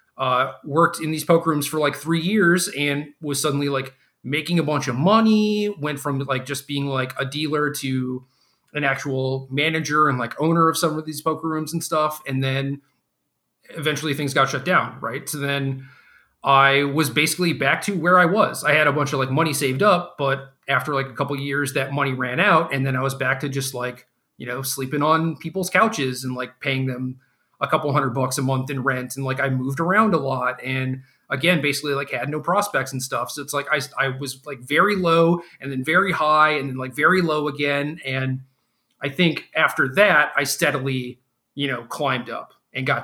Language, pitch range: English, 130-155 Hz